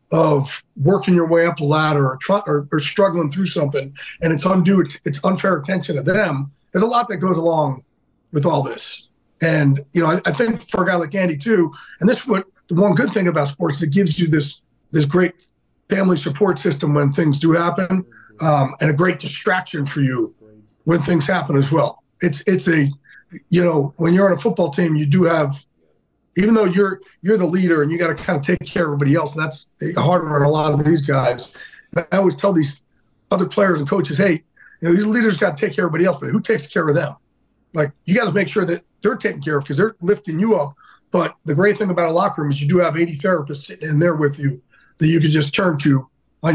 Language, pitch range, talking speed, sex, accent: English, 150-185 Hz, 240 wpm, male, American